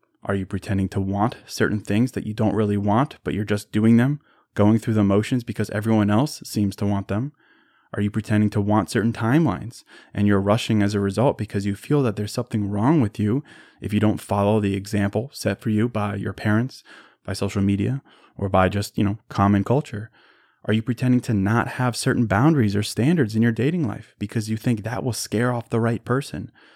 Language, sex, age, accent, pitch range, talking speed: English, male, 20-39, American, 105-120 Hz, 215 wpm